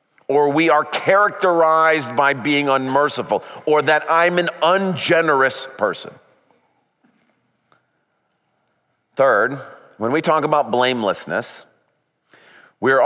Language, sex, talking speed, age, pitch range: English, male, 90 wpm, 40-59, 140-185 Hz